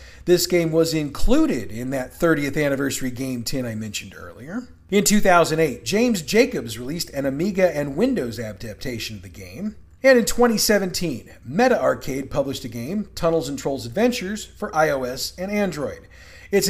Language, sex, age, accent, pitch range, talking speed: English, male, 40-59, American, 125-195 Hz, 155 wpm